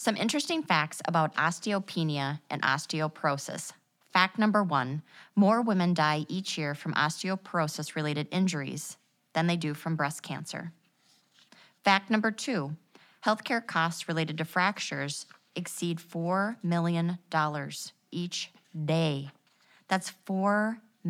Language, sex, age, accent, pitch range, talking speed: English, female, 30-49, American, 155-190 Hz, 110 wpm